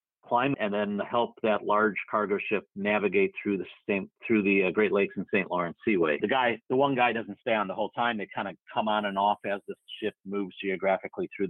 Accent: American